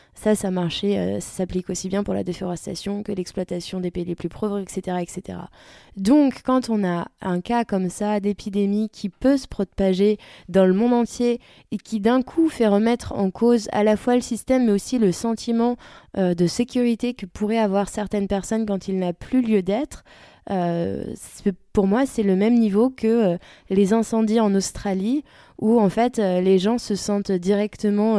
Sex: female